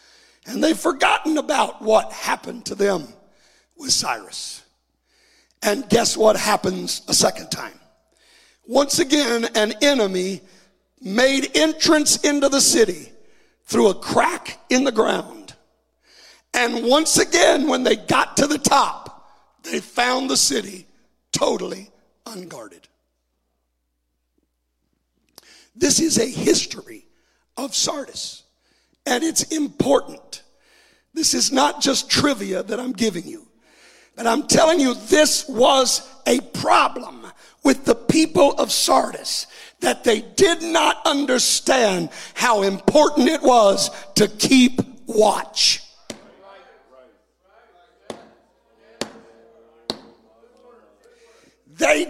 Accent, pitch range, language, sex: American, 210-305 Hz, English, male